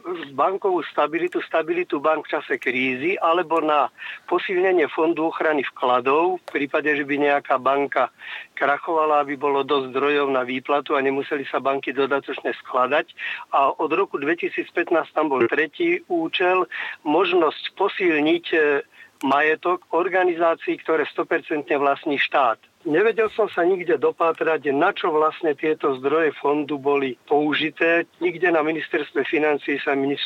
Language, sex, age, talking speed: Slovak, male, 50-69, 135 wpm